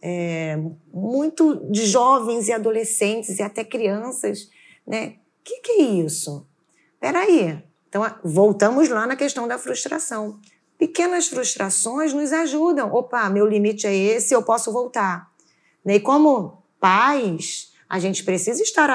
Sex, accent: female, Brazilian